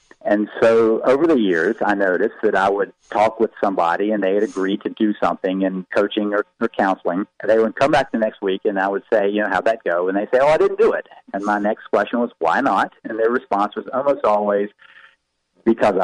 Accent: American